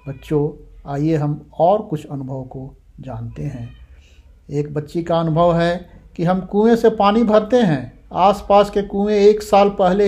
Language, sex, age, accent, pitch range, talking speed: Hindi, male, 60-79, native, 130-185 Hz, 160 wpm